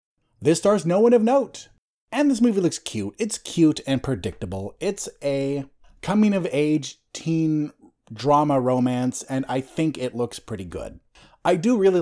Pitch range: 130-180 Hz